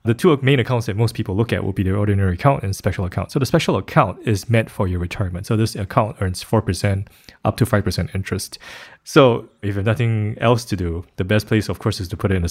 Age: 20-39